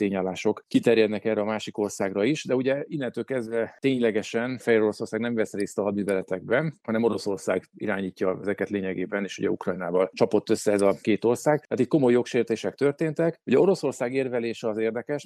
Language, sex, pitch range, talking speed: Hungarian, male, 100-115 Hz, 160 wpm